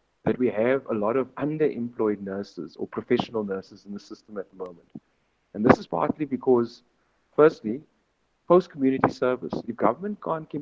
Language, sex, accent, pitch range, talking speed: English, male, Indian, 110-140 Hz, 160 wpm